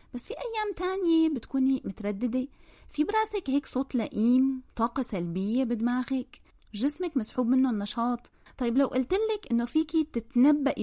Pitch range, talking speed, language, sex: 210-300 Hz, 140 wpm, Arabic, female